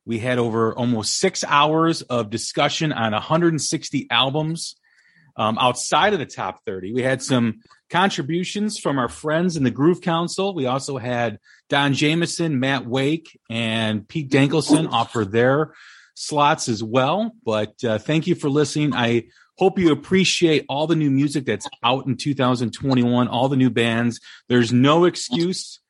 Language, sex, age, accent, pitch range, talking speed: English, male, 30-49, American, 120-160 Hz, 160 wpm